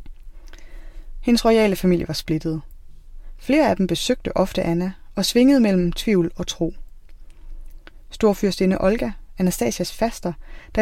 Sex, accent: female, native